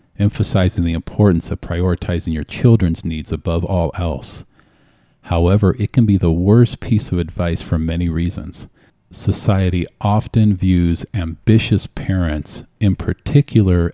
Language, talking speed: English, 130 wpm